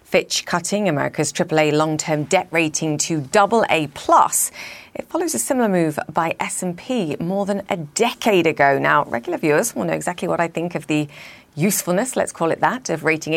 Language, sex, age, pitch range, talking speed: English, female, 40-59, 155-200 Hz, 175 wpm